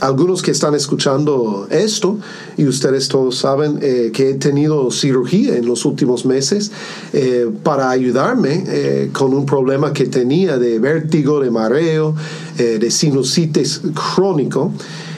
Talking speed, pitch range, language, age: 140 wpm, 140-195 Hz, English, 40-59